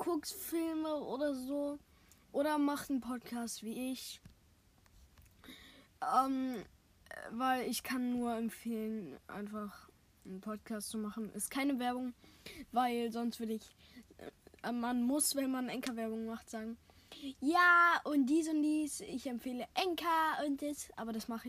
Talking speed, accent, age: 135 wpm, German, 10-29